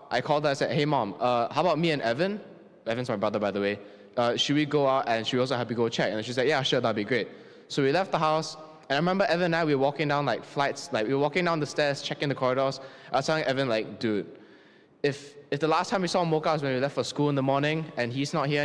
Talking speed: 300 wpm